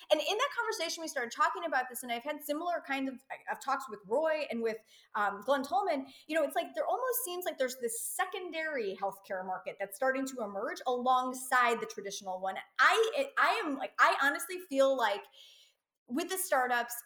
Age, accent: 30-49, American